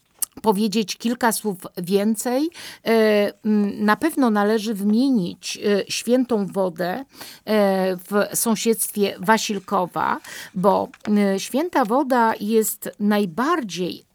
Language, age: Polish, 50-69